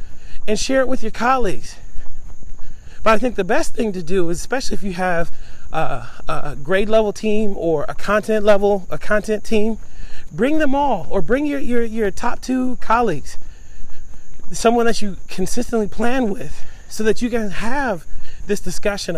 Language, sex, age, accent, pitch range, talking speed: English, male, 30-49, American, 160-205 Hz, 170 wpm